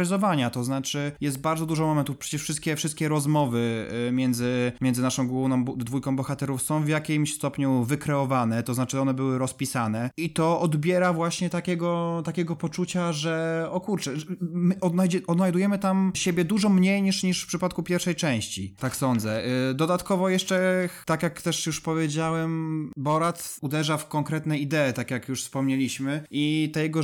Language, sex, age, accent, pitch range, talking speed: Polish, male, 20-39, native, 130-160 Hz, 155 wpm